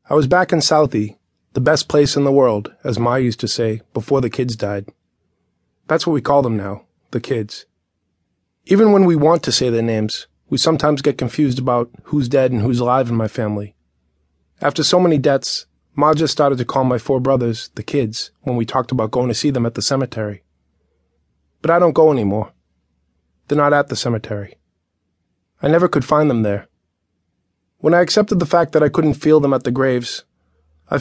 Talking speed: 200 wpm